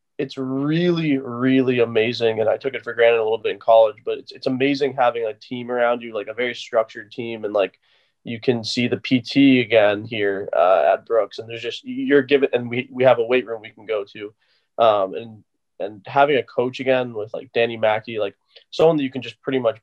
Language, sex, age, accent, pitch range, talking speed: English, male, 20-39, American, 110-130 Hz, 230 wpm